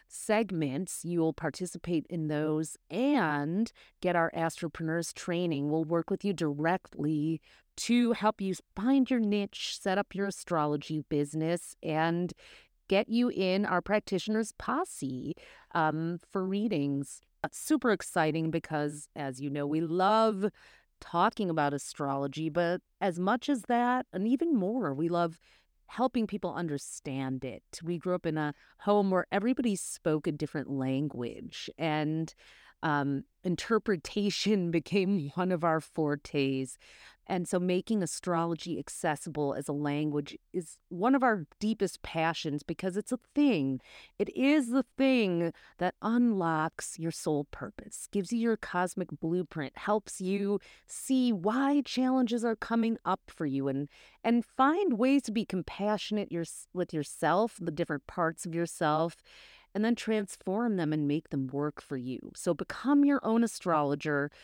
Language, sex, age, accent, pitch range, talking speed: English, female, 30-49, American, 155-215 Hz, 145 wpm